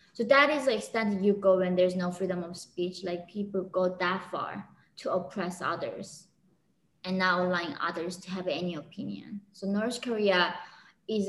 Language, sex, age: English, female, 20-39